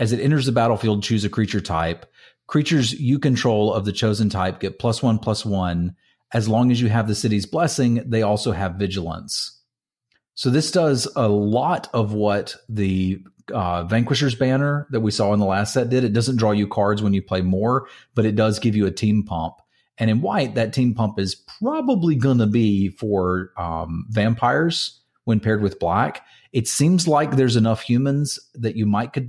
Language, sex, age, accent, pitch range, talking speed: English, male, 40-59, American, 100-125 Hz, 200 wpm